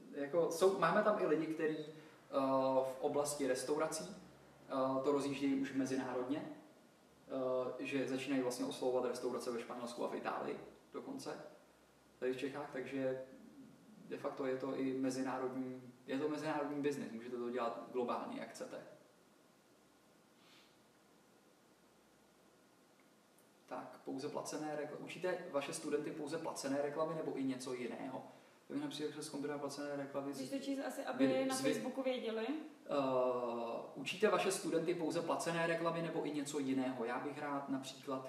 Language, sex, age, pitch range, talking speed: Czech, male, 20-39, 130-155 Hz, 140 wpm